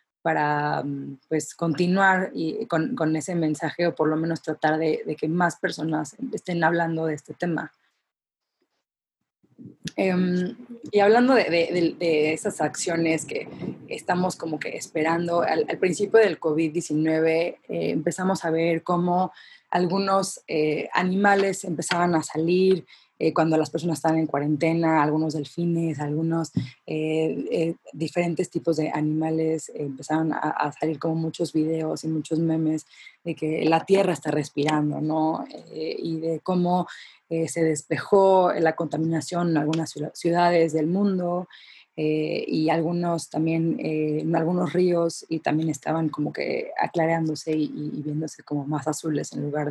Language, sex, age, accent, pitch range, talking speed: Spanish, female, 20-39, Mexican, 155-175 Hz, 140 wpm